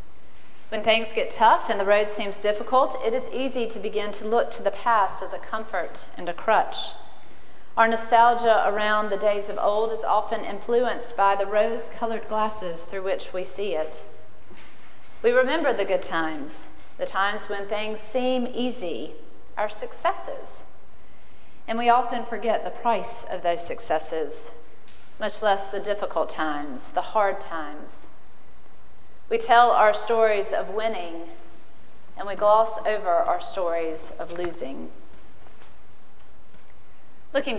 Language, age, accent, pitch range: English, 40-59, American, 190-235 Hz